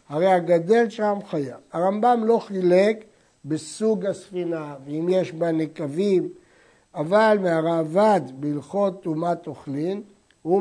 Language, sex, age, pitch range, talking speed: Hebrew, male, 60-79, 150-195 Hz, 105 wpm